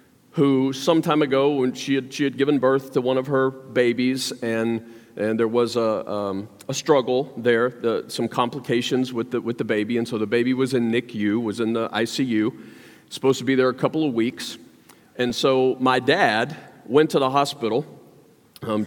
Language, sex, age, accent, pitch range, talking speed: English, male, 40-59, American, 115-140 Hz, 195 wpm